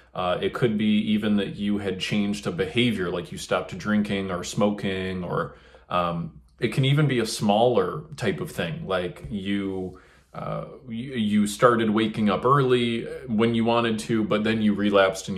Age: 30-49